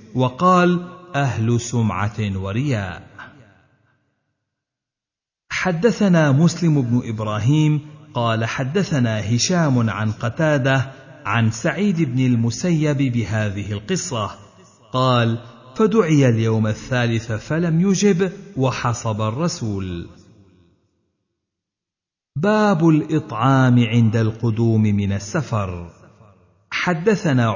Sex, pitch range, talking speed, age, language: male, 110-150 Hz, 75 wpm, 50-69, Arabic